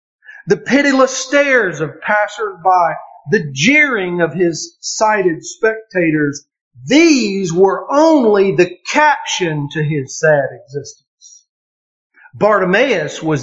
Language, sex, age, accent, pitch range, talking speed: English, male, 50-69, American, 165-265 Hz, 100 wpm